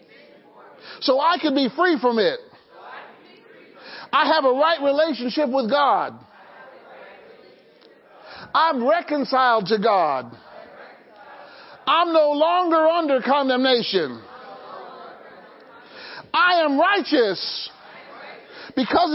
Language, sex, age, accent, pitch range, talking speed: English, male, 50-69, American, 290-385 Hz, 85 wpm